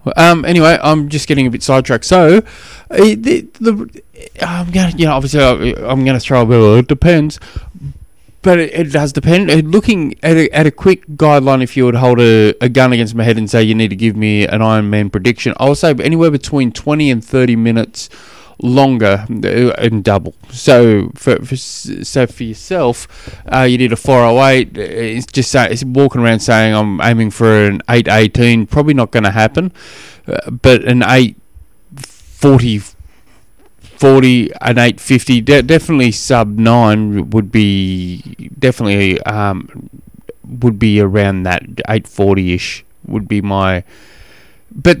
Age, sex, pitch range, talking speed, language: 20-39, male, 110-140 Hz, 160 wpm, English